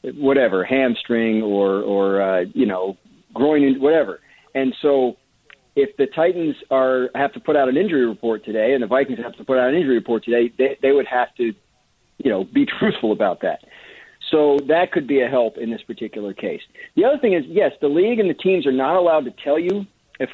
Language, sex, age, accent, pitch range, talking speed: English, male, 50-69, American, 120-150 Hz, 210 wpm